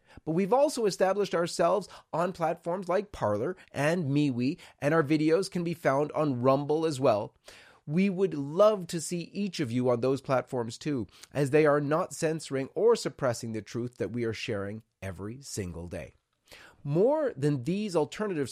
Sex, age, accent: male, 30-49, American